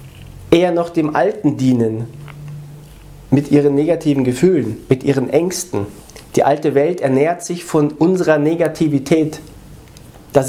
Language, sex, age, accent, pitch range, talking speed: German, male, 40-59, German, 135-170 Hz, 120 wpm